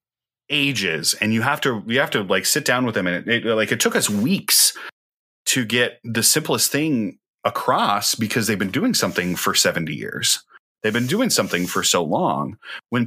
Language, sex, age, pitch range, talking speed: English, male, 30-49, 95-130 Hz, 190 wpm